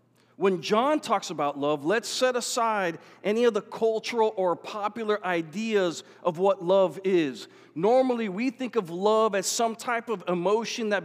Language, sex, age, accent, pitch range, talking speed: English, male, 40-59, American, 185-225 Hz, 165 wpm